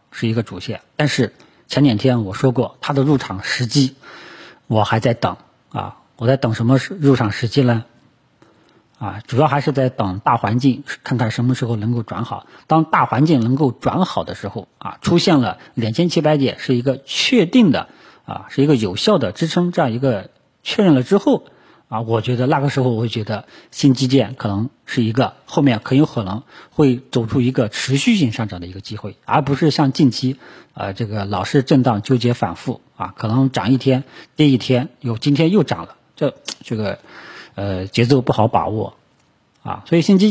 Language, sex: Chinese, male